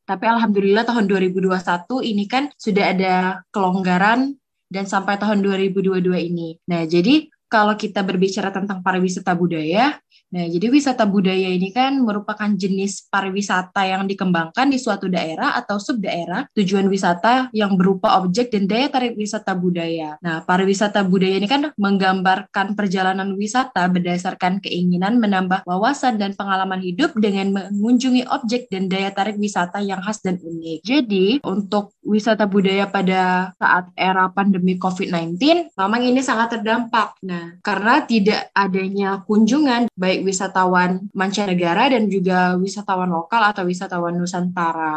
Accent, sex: native, female